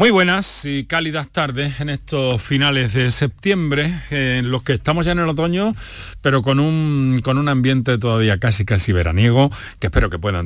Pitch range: 105-150 Hz